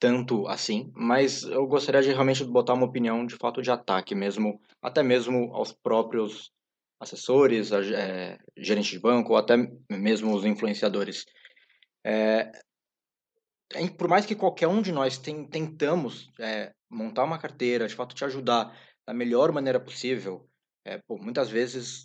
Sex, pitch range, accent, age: male, 125-165 Hz, Brazilian, 20-39